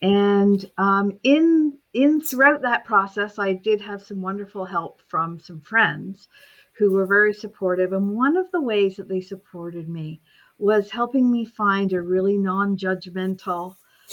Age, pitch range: 50-69, 170-215 Hz